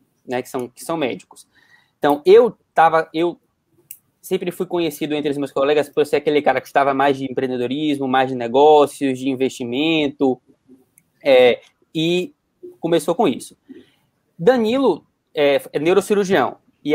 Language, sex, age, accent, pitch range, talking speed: Portuguese, male, 20-39, Brazilian, 155-245 Hz, 135 wpm